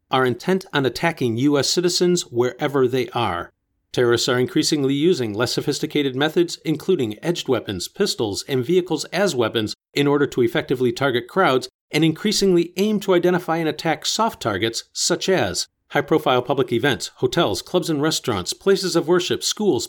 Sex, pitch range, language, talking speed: male, 125-165 Hz, English, 155 wpm